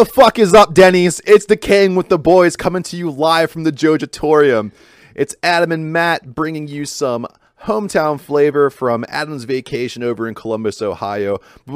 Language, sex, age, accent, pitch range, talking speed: English, male, 30-49, American, 110-150 Hz, 180 wpm